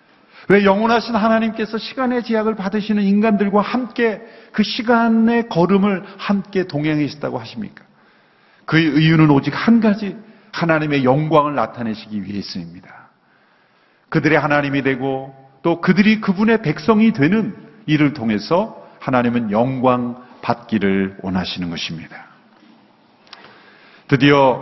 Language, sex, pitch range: Korean, male, 135-205 Hz